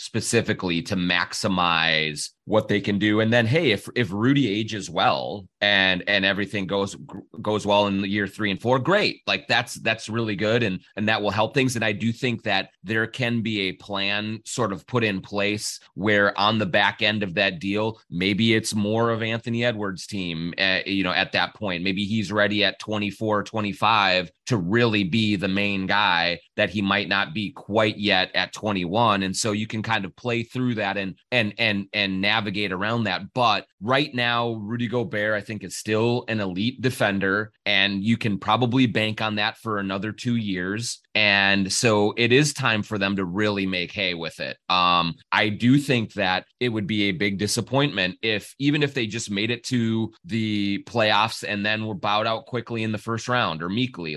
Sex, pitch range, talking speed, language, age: male, 100-115 Hz, 205 wpm, English, 30-49